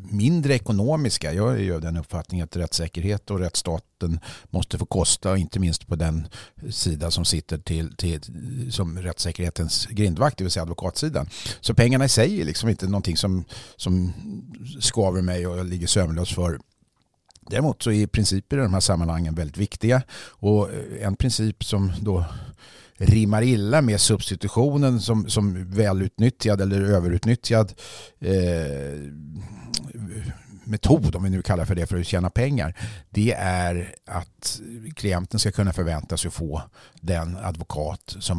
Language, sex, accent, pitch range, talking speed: English, male, Swedish, 90-115 Hz, 150 wpm